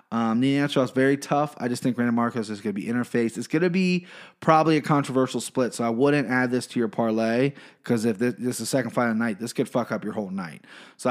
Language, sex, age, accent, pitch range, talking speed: English, male, 20-39, American, 115-140 Hz, 270 wpm